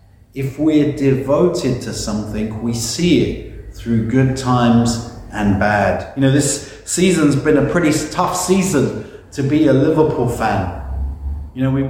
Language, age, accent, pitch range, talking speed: English, 40-59, British, 105-150 Hz, 150 wpm